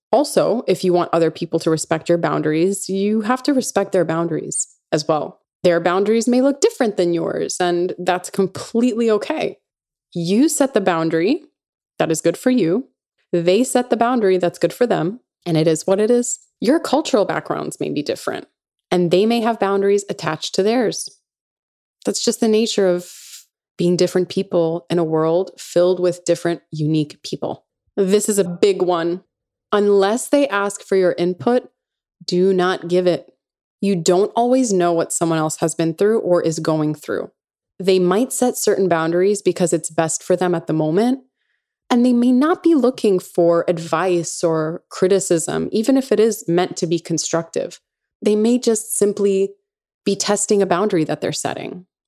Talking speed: 175 wpm